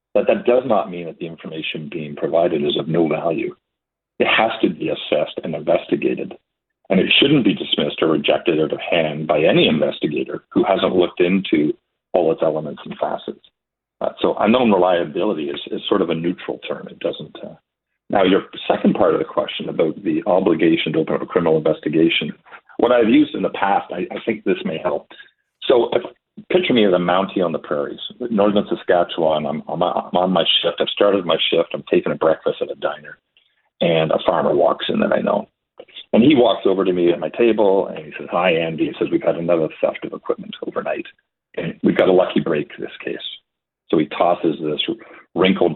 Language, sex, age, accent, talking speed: English, male, 50-69, American, 210 wpm